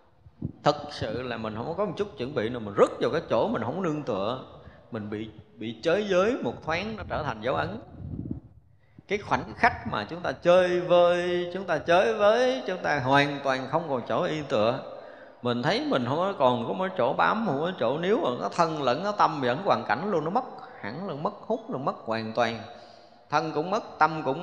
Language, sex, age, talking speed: Vietnamese, male, 20-39, 215 wpm